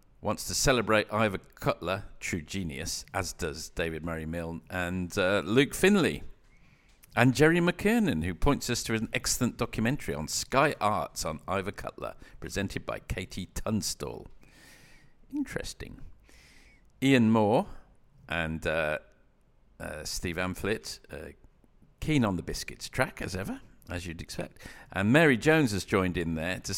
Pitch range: 85-130 Hz